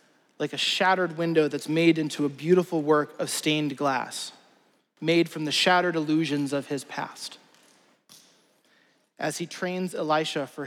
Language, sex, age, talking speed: English, male, 30-49, 145 wpm